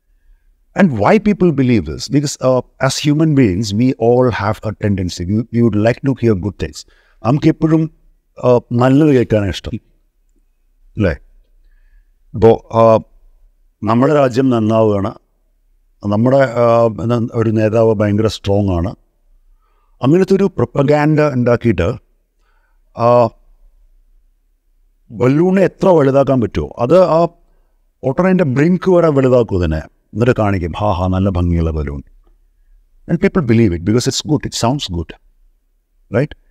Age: 50-69